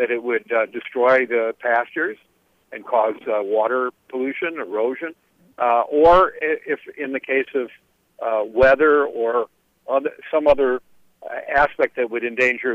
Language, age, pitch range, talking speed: English, 50-69, 125-160 Hz, 135 wpm